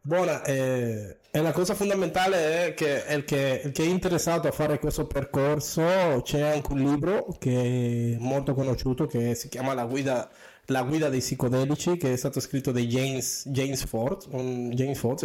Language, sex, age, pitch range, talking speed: Italian, male, 20-39, 125-150 Hz, 175 wpm